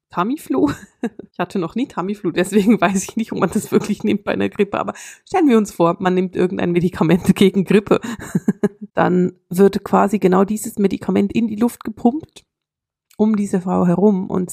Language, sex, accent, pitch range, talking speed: German, female, German, 175-205 Hz, 180 wpm